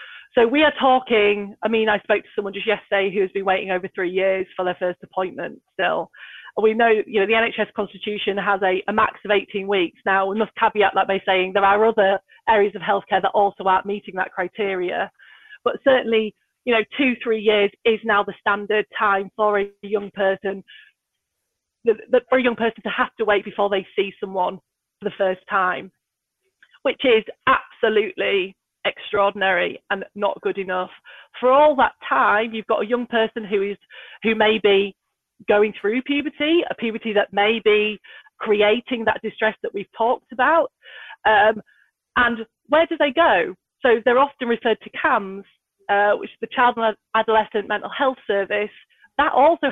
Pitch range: 200-235 Hz